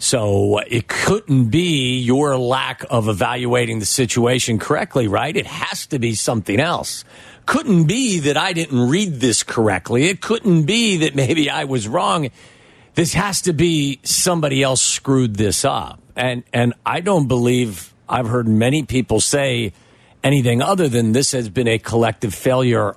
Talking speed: 160 wpm